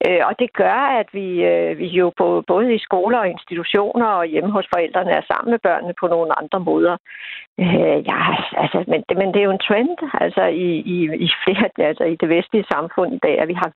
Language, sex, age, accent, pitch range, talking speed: Danish, female, 60-79, native, 175-225 Hz, 215 wpm